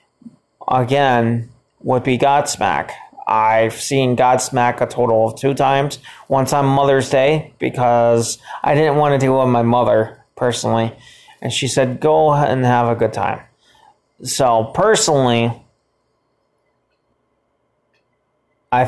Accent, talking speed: American, 120 wpm